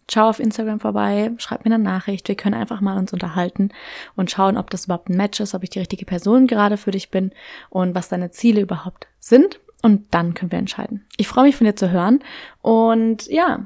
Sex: female